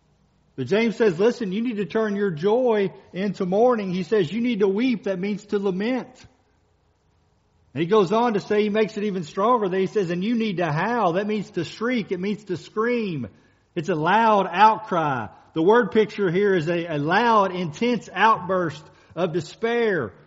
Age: 50-69